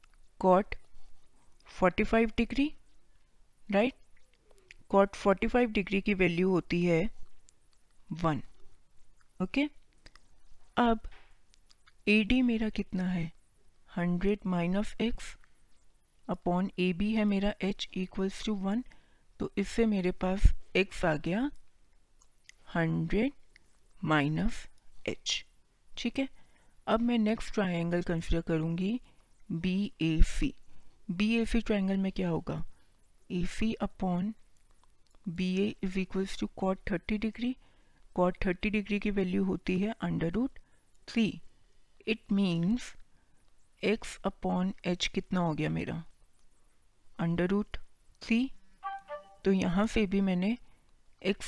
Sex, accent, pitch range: female, native, 180-220 Hz